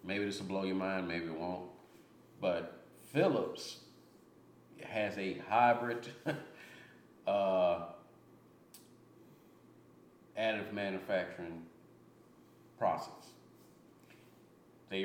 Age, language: 40-59, English